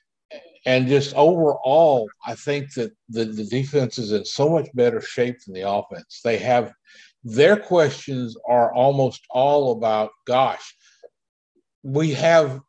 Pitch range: 105-135 Hz